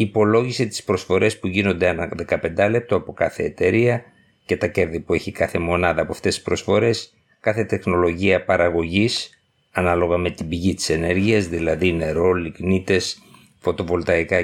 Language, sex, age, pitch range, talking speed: Greek, male, 50-69, 90-110 Hz, 145 wpm